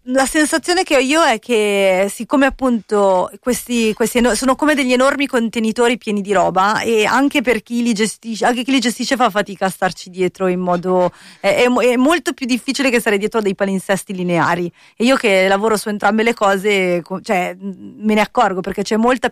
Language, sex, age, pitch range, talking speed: Italian, female, 30-49, 195-230 Hz, 195 wpm